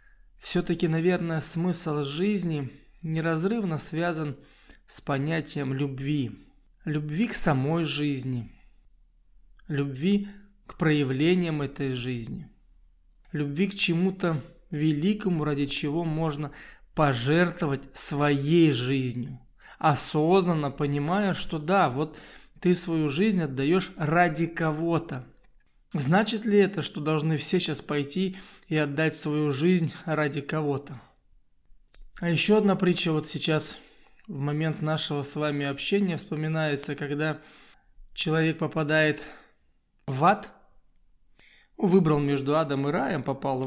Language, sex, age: Russian, male, 20-39